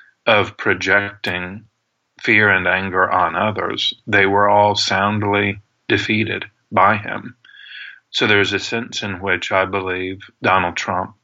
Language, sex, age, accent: English, male, 40-59, American